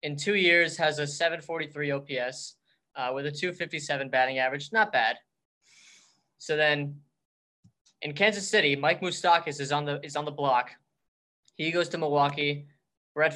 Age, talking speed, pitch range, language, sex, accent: 20-39, 145 wpm, 135-170 Hz, English, male, American